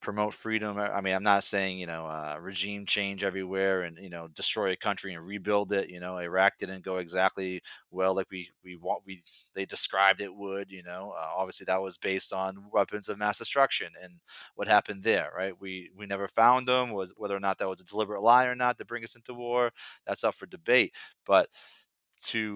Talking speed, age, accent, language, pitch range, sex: 220 wpm, 30-49, American, English, 95-115 Hz, male